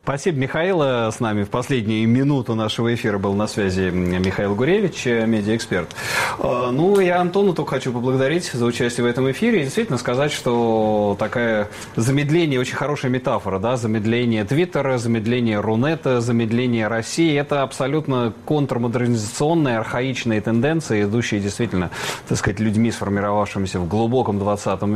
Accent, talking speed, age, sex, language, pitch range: native, 135 wpm, 30-49, male, Russian, 105-135 Hz